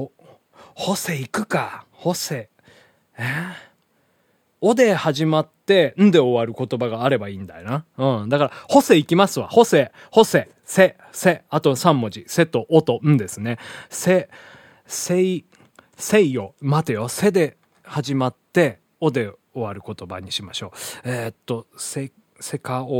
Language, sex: Japanese, male